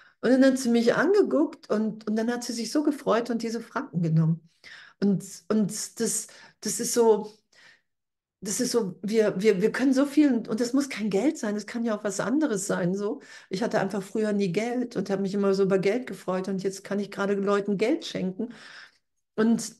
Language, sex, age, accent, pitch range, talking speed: German, female, 50-69, German, 200-245 Hz, 215 wpm